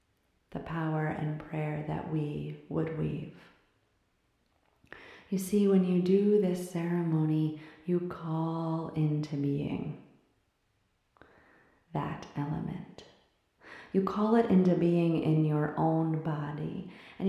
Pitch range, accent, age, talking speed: 150-175 Hz, American, 30-49, 110 wpm